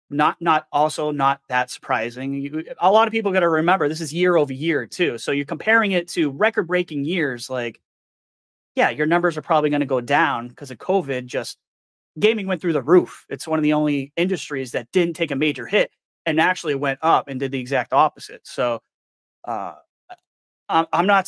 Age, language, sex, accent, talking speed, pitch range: 30-49, English, male, American, 195 wpm, 140-180 Hz